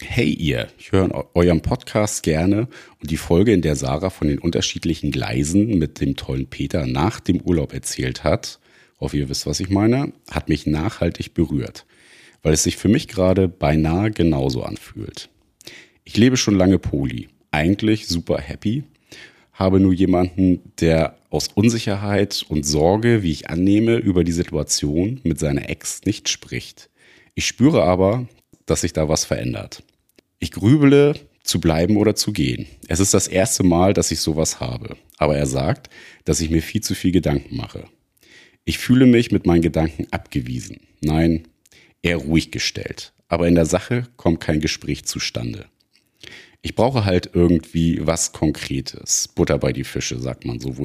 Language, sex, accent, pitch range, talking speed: German, male, German, 80-100 Hz, 165 wpm